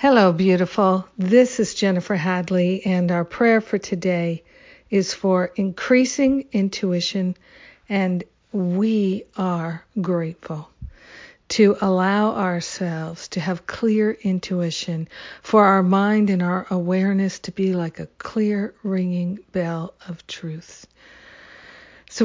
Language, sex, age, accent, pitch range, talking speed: English, female, 50-69, American, 180-205 Hz, 115 wpm